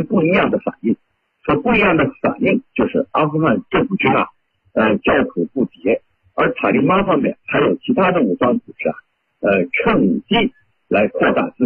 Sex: male